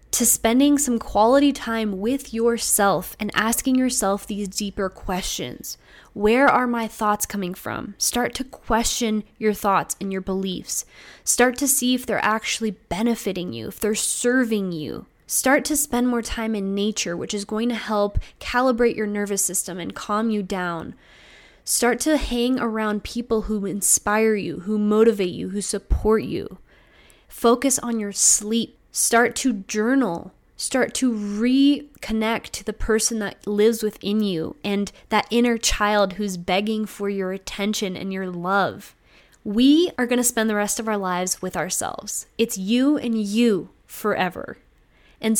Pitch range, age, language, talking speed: 200-240 Hz, 20-39, English, 160 wpm